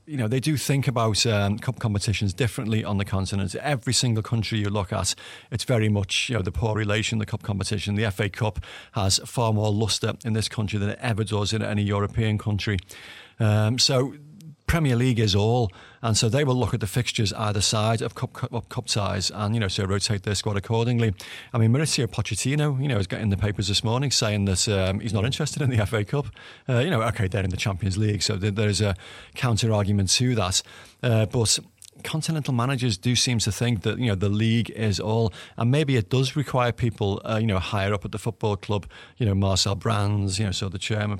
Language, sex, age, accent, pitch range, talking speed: English, male, 40-59, British, 100-120 Hz, 225 wpm